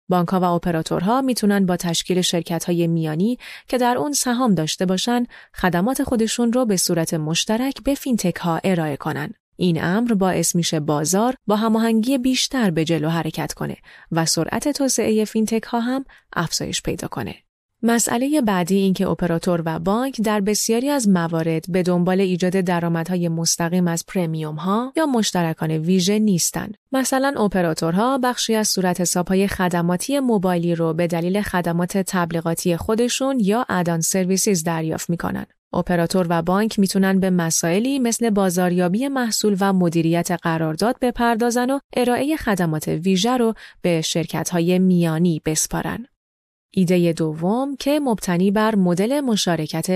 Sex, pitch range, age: female, 170-225 Hz, 30-49